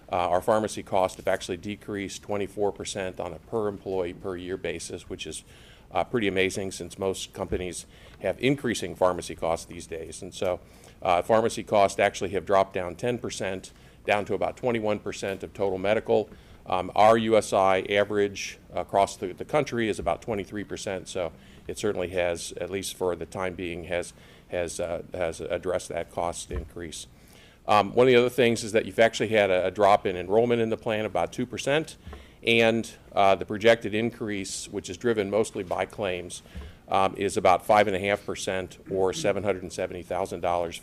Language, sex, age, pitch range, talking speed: English, male, 50-69, 95-110 Hz, 165 wpm